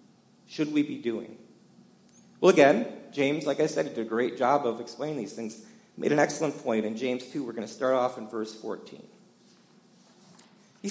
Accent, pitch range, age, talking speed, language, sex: American, 130-215 Hz, 40-59, 185 wpm, English, male